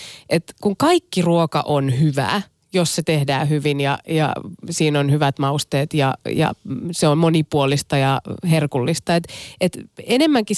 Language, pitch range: Finnish, 145-175 Hz